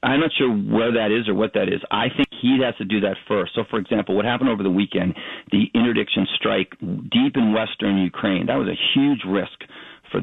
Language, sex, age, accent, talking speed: English, male, 40-59, American, 230 wpm